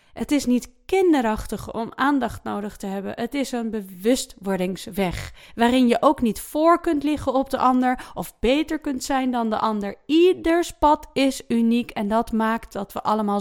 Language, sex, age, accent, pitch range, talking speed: English, female, 20-39, Dutch, 205-265 Hz, 180 wpm